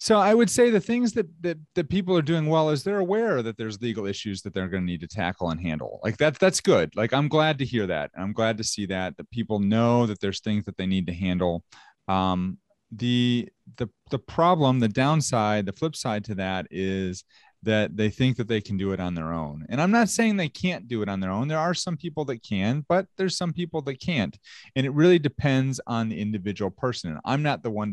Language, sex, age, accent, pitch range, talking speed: English, male, 30-49, American, 105-140 Hz, 245 wpm